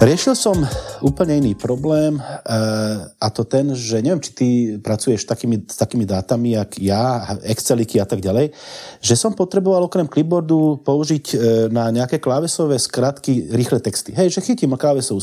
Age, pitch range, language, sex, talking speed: 40-59, 115-160 Hz, Slovak, male, 155 wpm